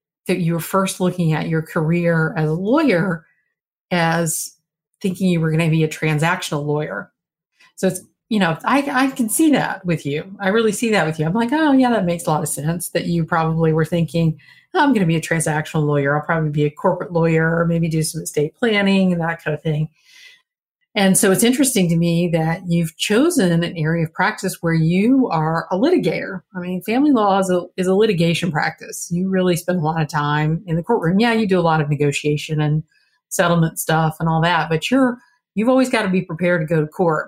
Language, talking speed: English, 230 wpm